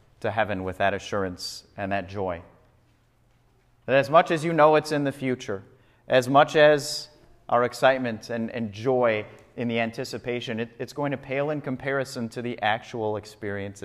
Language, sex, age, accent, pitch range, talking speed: English, male, 30-49, American, 115-150 Hz, 175 wpm